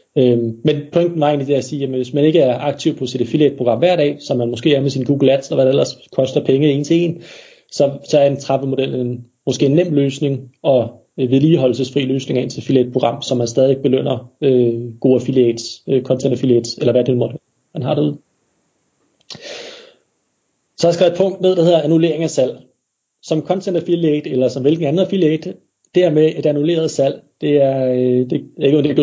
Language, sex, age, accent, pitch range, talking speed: Danish, male, 30-49, native, 130-160 Hz, 205 wpm